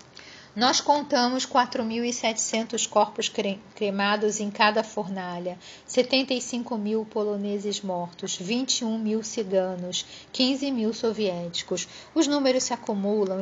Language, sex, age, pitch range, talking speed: Portuguese, female, 40-59, 200-235 Hz, 100 wpm